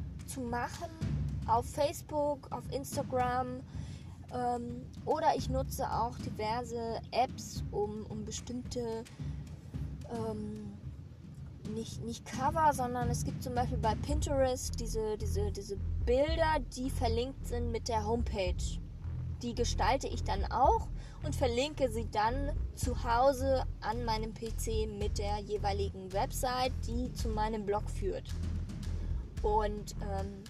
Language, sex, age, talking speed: German, female, 20-39, 120 wpm